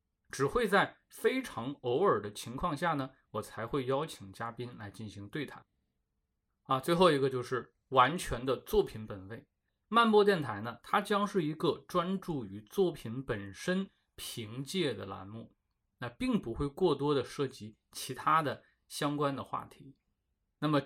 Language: Chinese